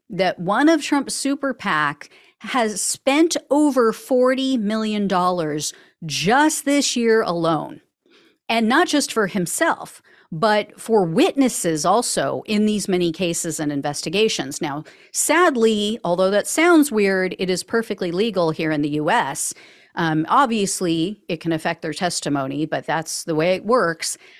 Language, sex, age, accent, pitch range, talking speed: English, female, 40-59, American, 180-275 Hz, 145 wpm